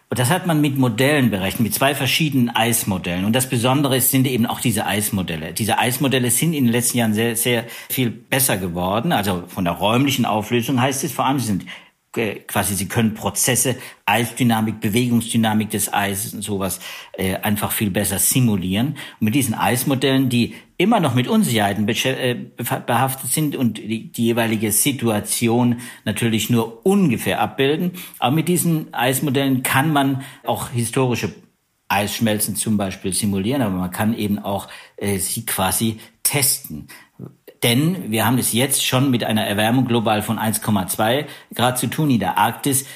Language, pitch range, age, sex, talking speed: German, 105-130 Hz, 60-79, male, 160 wpm